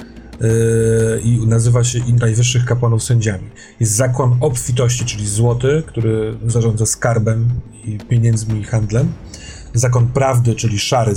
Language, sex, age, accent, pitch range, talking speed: Polish, male, 40-59, native, 110-125 Hz, 130 wpm